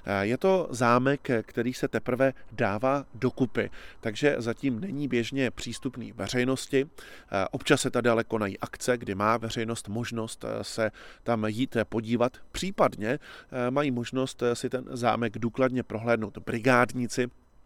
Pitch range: 110-130 Hz